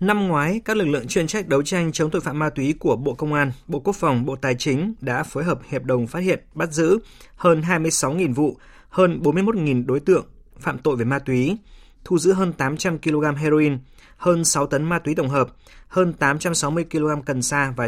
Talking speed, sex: 215 wpm, male